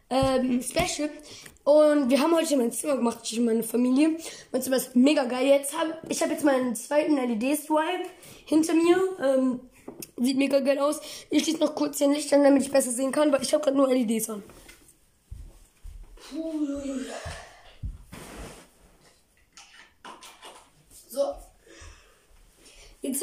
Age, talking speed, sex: 20-39, 140 wpm, female